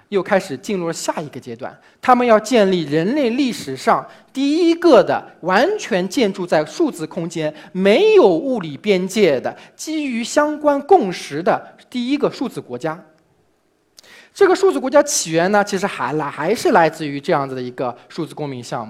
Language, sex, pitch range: Chinese, male, 170-275 Hz